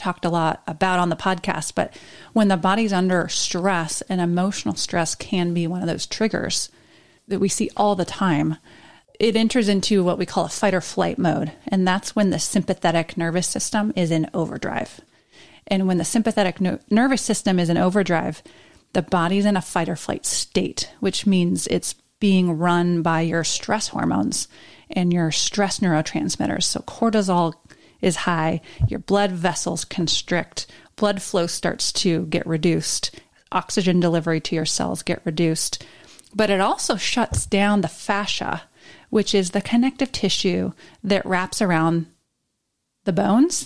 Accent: American